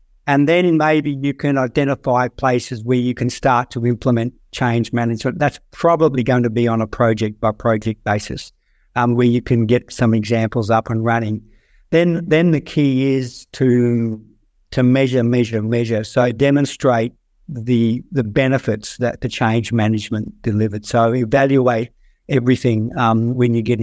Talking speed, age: 160 wpm, 60-79